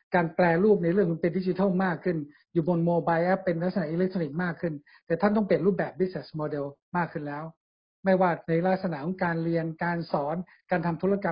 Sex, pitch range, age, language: male, 165-190 Hz, 60-79, Thai